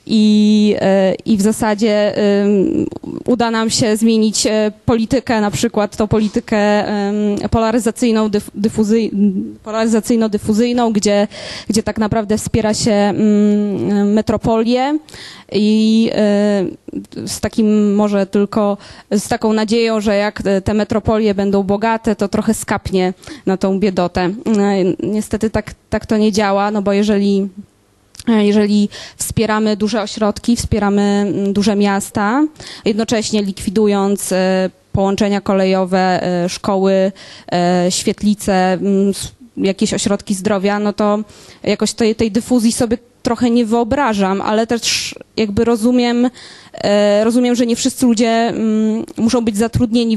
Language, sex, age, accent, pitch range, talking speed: Polish, female, 20-39, native, 205-230 Hz, 105 wpm